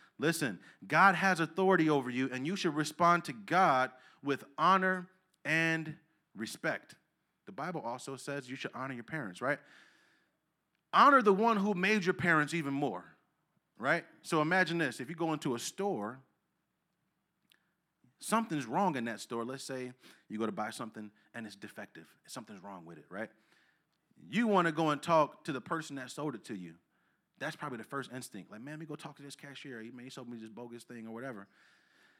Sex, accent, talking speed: male, American, 190 wpm